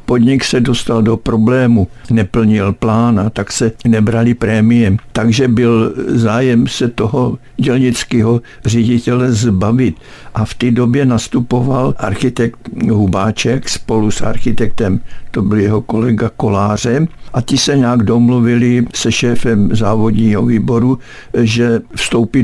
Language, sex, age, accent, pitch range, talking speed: Czech, male, 60-79, native, 110-125 Hz, 125 wpm